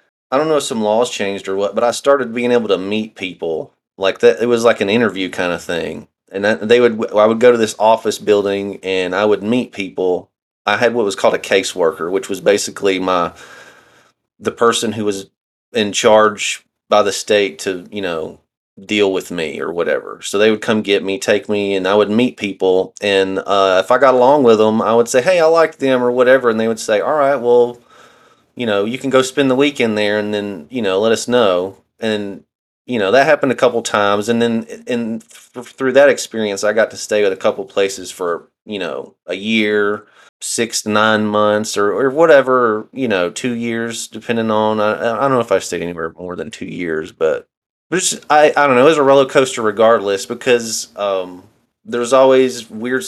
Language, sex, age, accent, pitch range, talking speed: English, male, 30-49, American, 100-125 Hz, 220 wpm